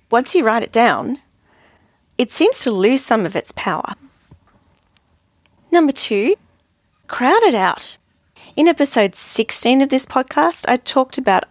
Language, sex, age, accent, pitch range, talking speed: English, female, 40-59, Australian, 185-240 Hz, 140 wpm